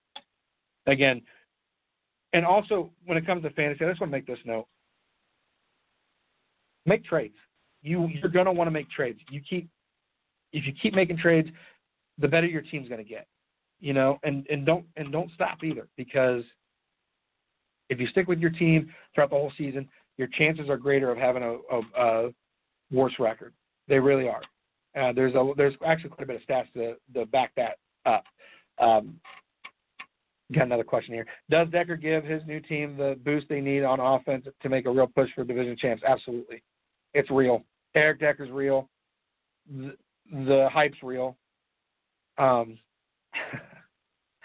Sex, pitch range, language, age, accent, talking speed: male, 130-155 Hz, English, 40-59, American, 165 wpm